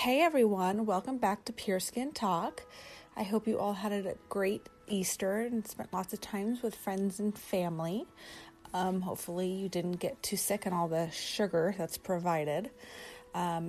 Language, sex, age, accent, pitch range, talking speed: English, female, 30-49, American, 180-230 Hz, 170 wpm